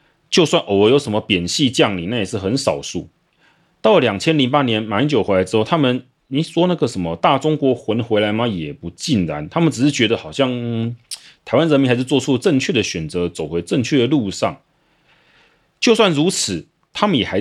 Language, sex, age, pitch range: Chinese, male, 30-49, 100-145 Hz